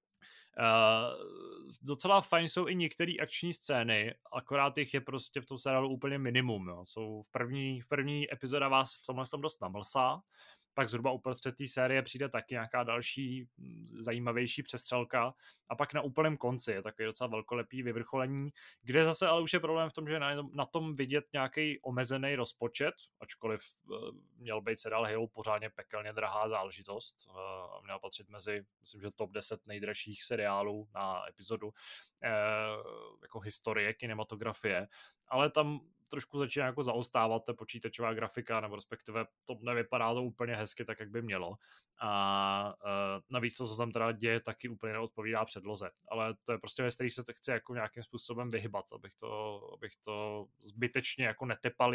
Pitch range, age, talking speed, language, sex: 110-135 Hz, 20-39, 160 wpm, Czech, male